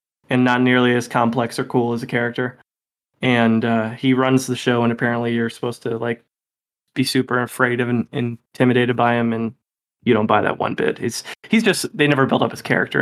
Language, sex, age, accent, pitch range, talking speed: English, male, 20-39, American, 120-130 Hz, 210 wpm